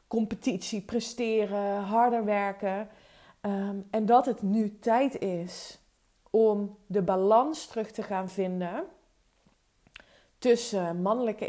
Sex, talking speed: female, 100 wpm